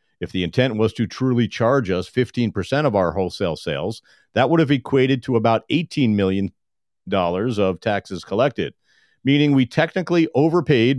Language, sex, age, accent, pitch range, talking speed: English, male, 50-69, American, 100-135 Hz, 155 wpm